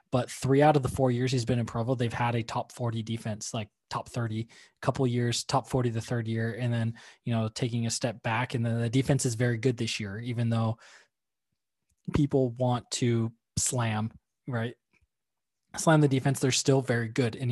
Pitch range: 120-135 Hz